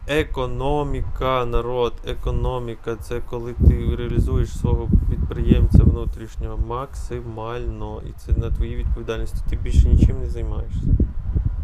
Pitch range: 85-125 Hz